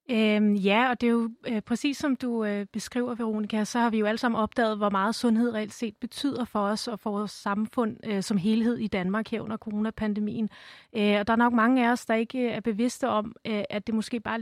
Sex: female